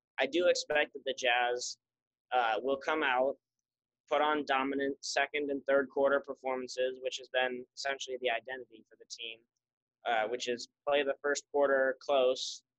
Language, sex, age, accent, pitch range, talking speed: English, male, 20-39, American, 125-140 Hz, 165 wpm